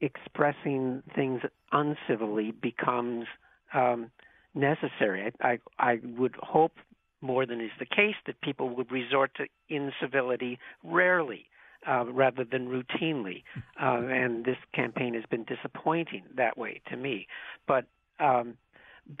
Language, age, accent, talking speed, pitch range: English, 60-79, American, 120 wpm, 125-155 Hz